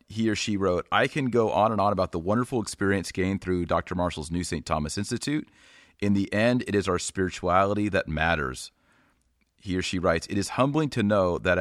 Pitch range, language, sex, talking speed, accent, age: 80-105 Hz, English, male, 210 wpm, American, 30-49